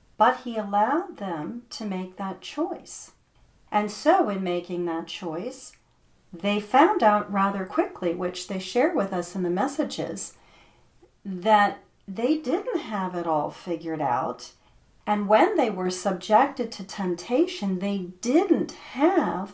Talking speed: 140 wpm